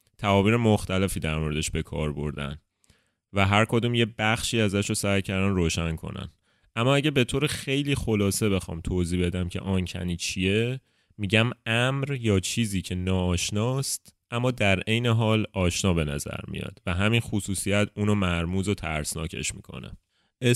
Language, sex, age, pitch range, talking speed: Persian, male, 30-49, 85-110 Hz, 150 wpm